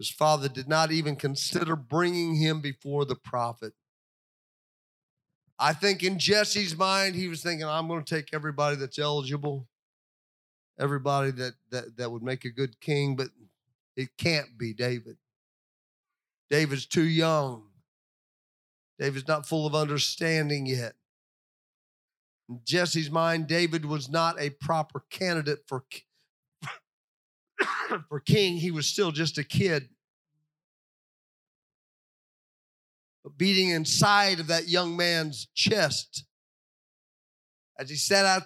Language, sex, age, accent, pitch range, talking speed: English, male, 40-59, American, 140-190 Hz, 125 wpm